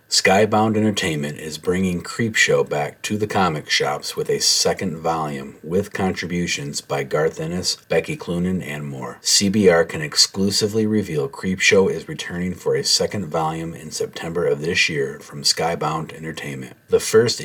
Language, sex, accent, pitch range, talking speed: English, male, American, 80-110 Hz, 150 wpm